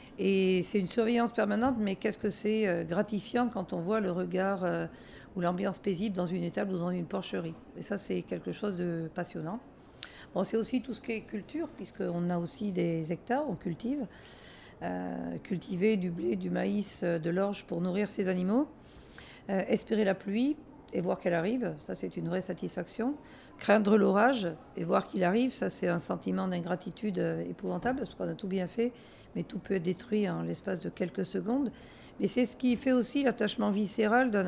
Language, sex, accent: French, female, French